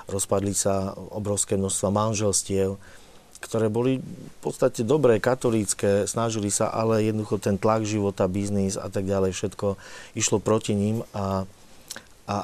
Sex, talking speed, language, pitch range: male, 135 wpm, Slovak, 95-110 Hz